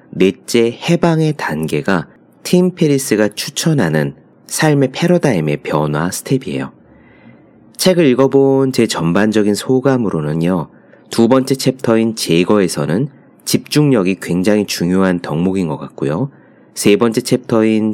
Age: 30-49